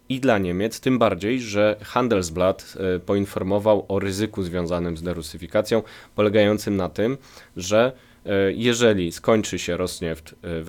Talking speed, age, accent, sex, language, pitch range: 130 wpm, 20-39, native, male, Polish, 90-110 Hz